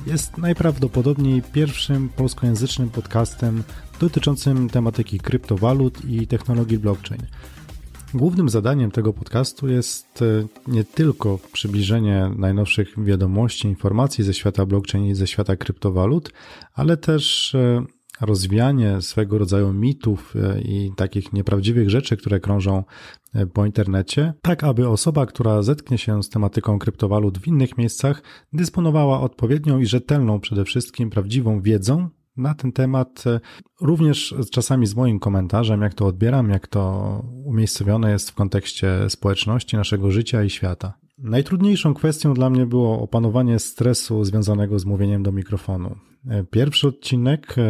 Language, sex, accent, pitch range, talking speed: Polish, male, native, 100-130 Hz, 125 wpm